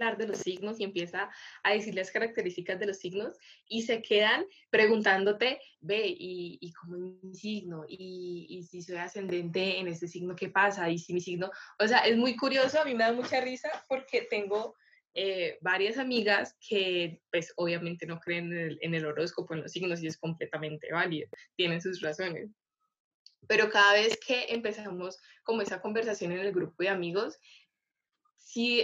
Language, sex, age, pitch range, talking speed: Spanish, female, 10-29, 175-220 Hz, 175 wpm